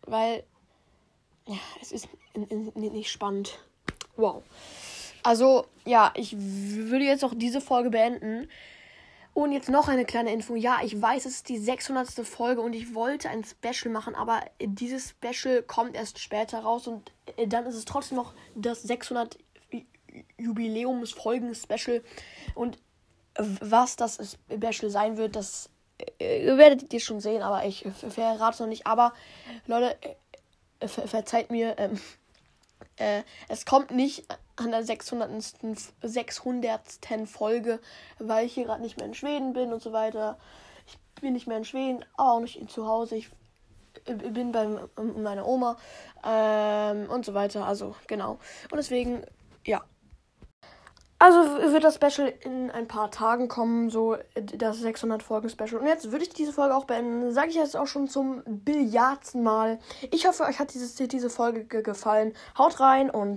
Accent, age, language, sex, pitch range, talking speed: German, 10-29, German, female, 220-255 Hz, 150 wpm